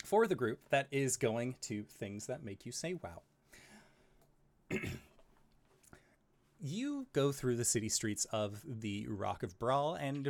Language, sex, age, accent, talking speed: English, male, 30-49, American, 145 wpm